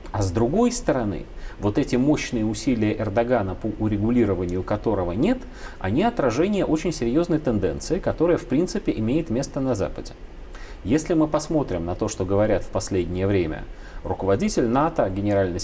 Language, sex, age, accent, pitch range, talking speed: Russian, male, 30-49, native, 95-155 Hz, 145 wpm